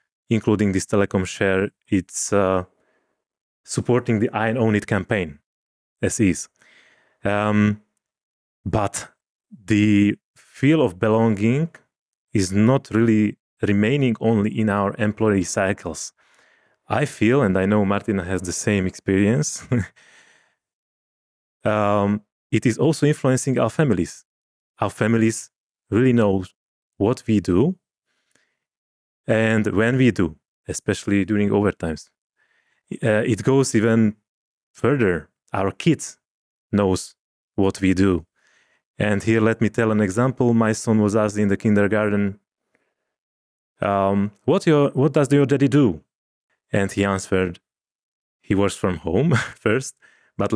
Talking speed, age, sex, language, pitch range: 120 wpm, 30-49, male, Slovak, 100-115 Hz